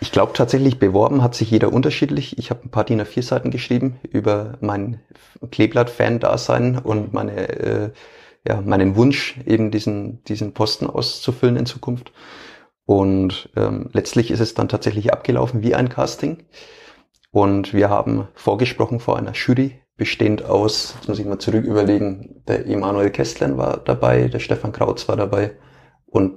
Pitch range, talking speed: 100-120 Hz, 150 wpm